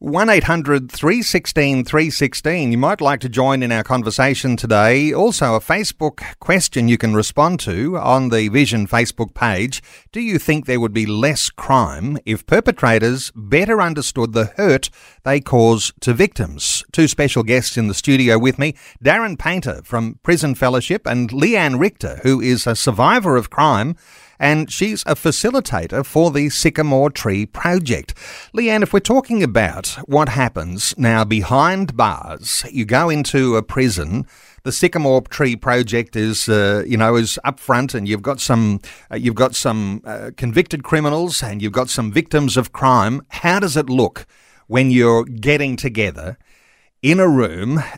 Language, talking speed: English, 170 wpm